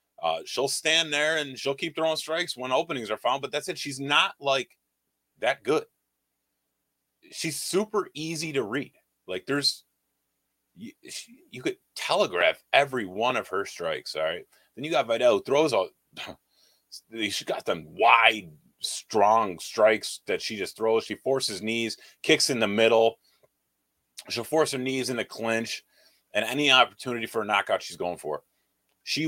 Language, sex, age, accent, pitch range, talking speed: English, male, 30-49, American, 100-155 Hz, 170 wpm